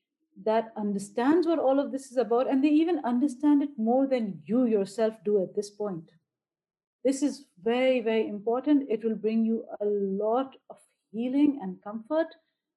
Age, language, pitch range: 50-69, English, 215-285 Hz